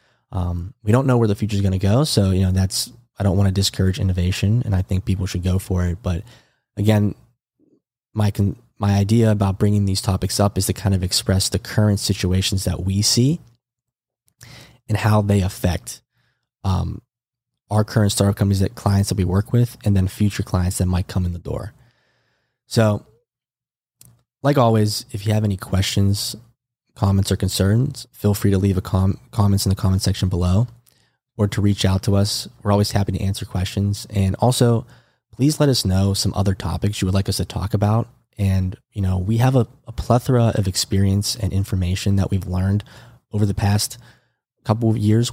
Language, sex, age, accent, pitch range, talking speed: English, male, 20-39, American, 95-115 Hz, 195 wpm